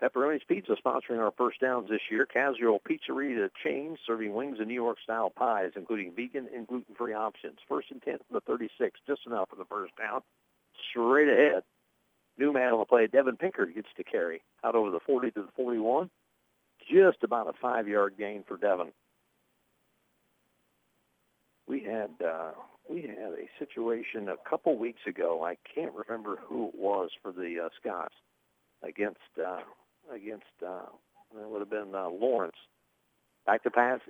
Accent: American